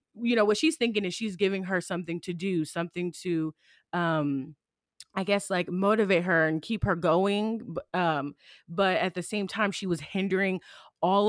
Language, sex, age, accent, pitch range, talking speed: English, female, 20-39, American, 165-195 Hz, 180 wpm